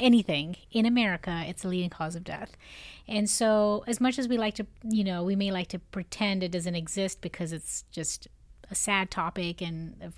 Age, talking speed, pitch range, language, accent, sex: 30-49, 205 wpm, 170-195 Hz, English, American, female